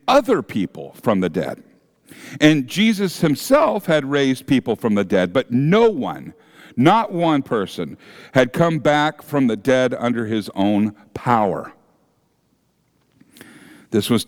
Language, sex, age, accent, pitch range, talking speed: English, male, 50-69, American, 115-165 Hz, 135 wpm